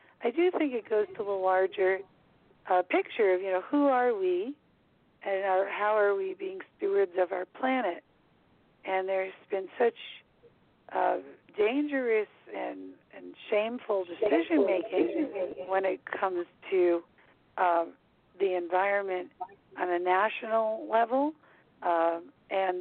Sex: female